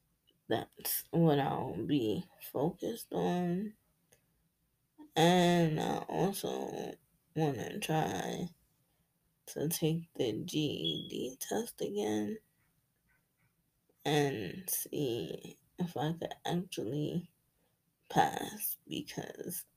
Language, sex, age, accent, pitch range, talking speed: English, female, 20-39, American, 150-170 Hz, 80 wpm